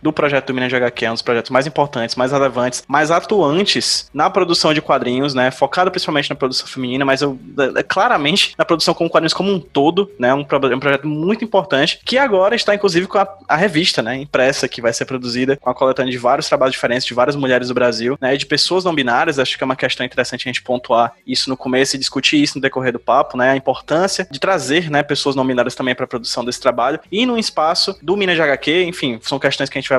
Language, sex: Portuguese, male